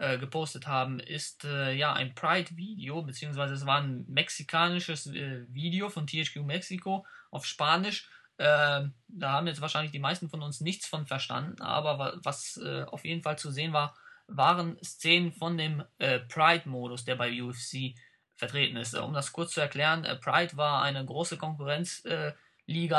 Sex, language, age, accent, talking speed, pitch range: male, German, 20-39, German, 160 wpm, 135-165 Hz